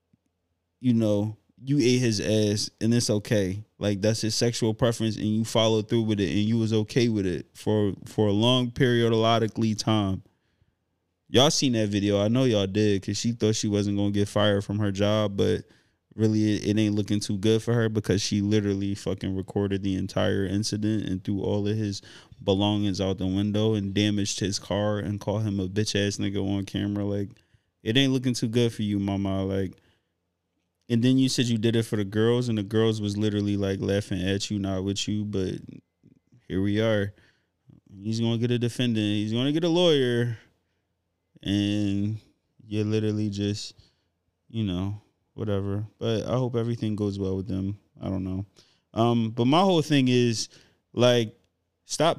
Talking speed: 190 wpm